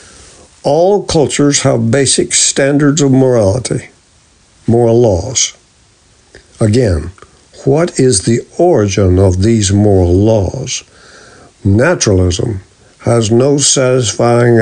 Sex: male